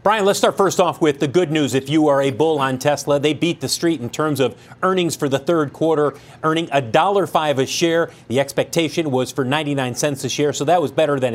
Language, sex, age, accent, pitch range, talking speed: English, male, 40-59, American, 145-185 Hz, 245 wpm